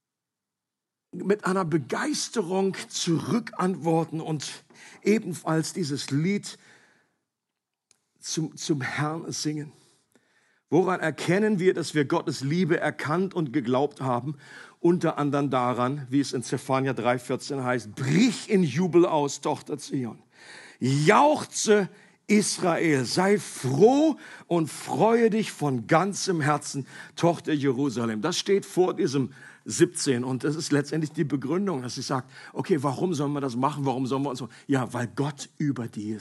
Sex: male